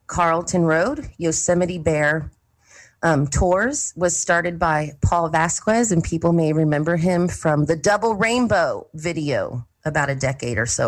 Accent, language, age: American, English, 30-49